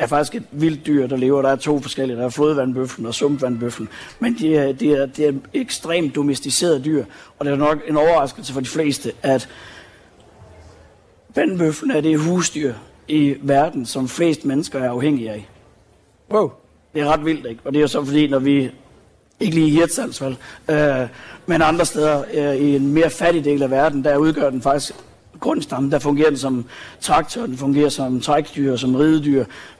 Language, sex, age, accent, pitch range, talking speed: Danish, male, 60-79, native, 130-150 Hz, 185 wpm